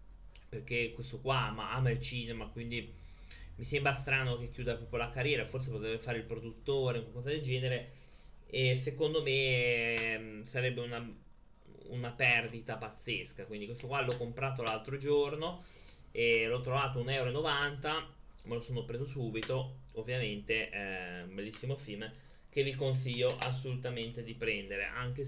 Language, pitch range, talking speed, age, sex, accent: Italian, 115-135 Hz, 145 wpm, 20-39, male, native